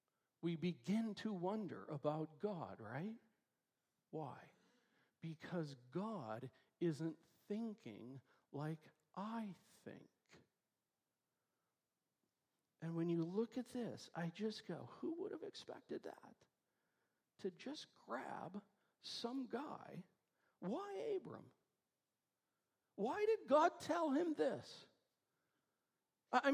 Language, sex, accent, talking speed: English, male, American, 95 wpm